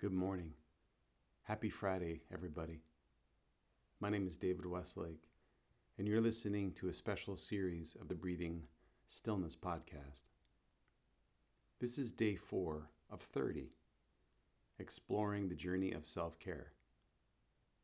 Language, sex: English, male